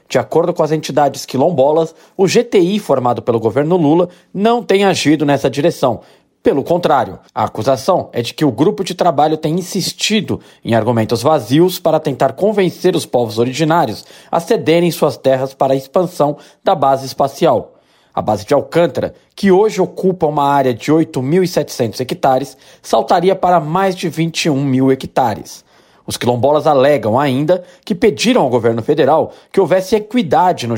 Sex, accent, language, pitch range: male, Brazilian, Portuguese, 135-185 Hz